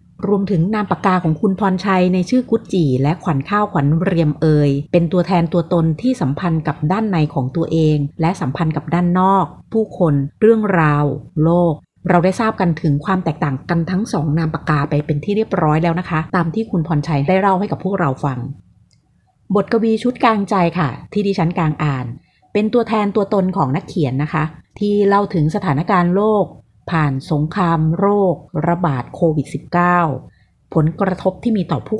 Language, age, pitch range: Thai, 30-49, 150-195 Hz